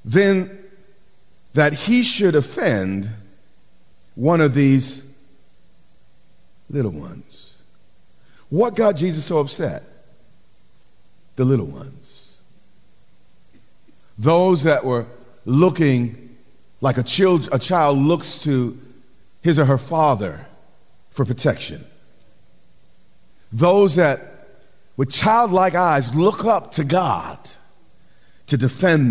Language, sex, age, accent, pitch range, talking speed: English, male, 50-69, American, 125-175 Hz, 90 wpm